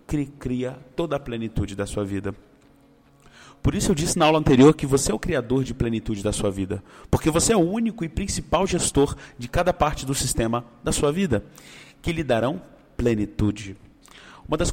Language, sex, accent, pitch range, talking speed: Portuguese, male, Brazilian, 110-145 Hz, 190 wpm